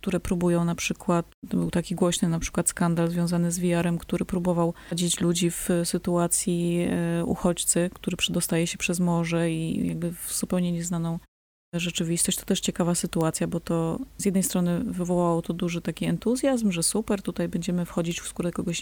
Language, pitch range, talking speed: Polish, 170-190 Hz, 175 wpm